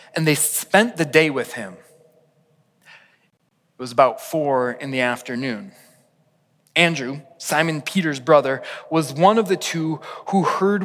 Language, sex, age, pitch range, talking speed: English, male, 20-39, 150-180 Hz, 140 wpm